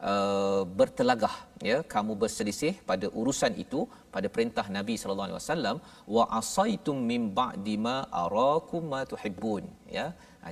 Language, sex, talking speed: Malayalam, male, 130 wpm